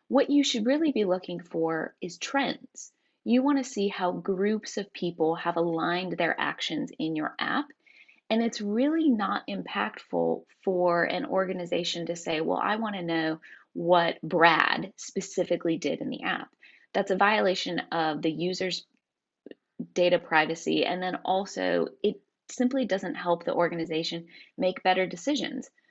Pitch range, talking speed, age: 170-210 Hz, 155 wpm, 20-39